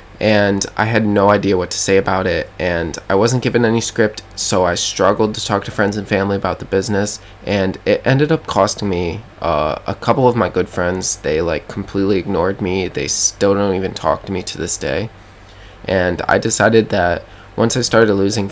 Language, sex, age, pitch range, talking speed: English, male, 20-39, 95-105 Hz, 205 wpm